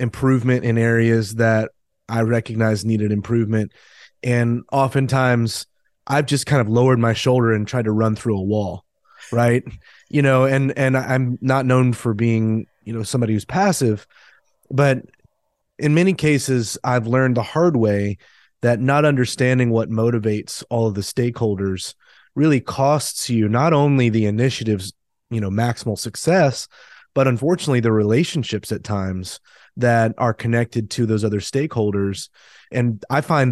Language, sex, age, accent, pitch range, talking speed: English, male, 30-49, American, 110-130 Hz, 150 wpm